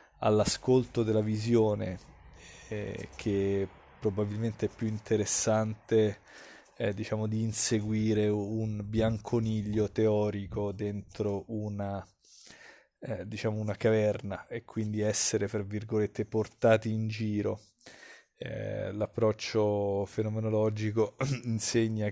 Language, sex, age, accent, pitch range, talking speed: Italian, male, 20-39, native, 105-110 Hz, 90 wpm